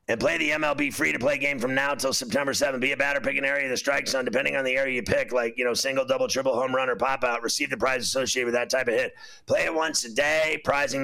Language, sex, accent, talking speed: English, male, American, 285 wpm